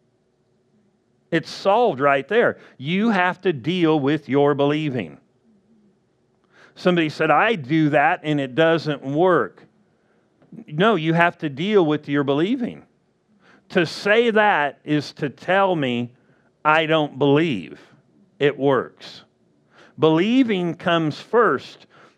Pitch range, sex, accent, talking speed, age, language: 145-195 Hz, male, American, 115 wpm, 50-69, English